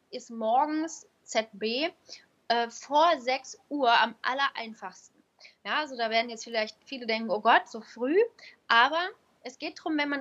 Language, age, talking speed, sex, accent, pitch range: German, 10-29, 160 wpm, female, German, 225-275 Hz